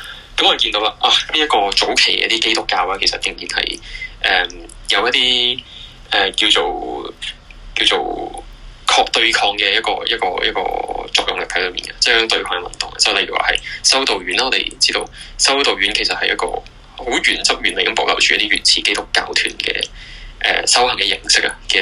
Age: 10-29